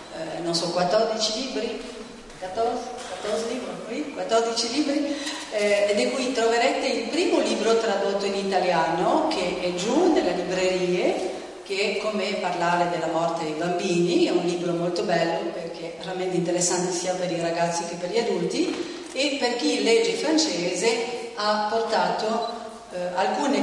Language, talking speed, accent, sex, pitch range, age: French, 145 wpm, Italian, female, 185-245 Hz, 40-59